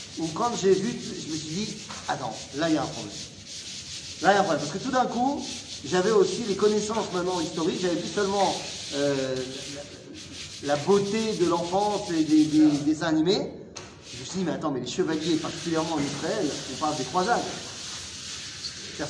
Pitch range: 185-270 Hz